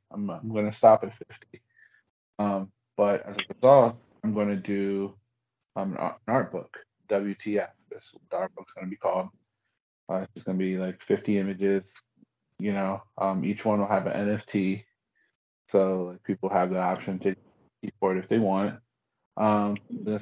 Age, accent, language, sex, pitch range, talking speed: 20-39, American, English, male, 95-110 Hz, 180 wpm